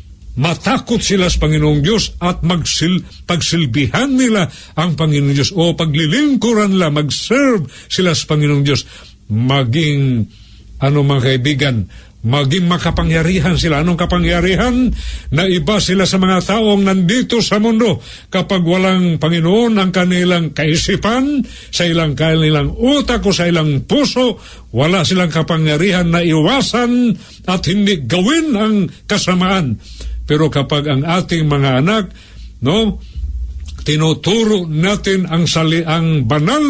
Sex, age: male, 50-69